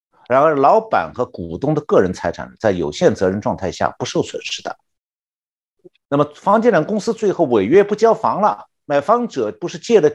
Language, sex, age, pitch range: Chinese, male, 50-69, 135-205 Hz